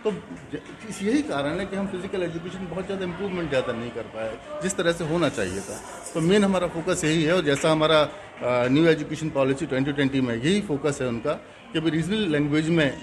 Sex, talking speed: male, 205 wpm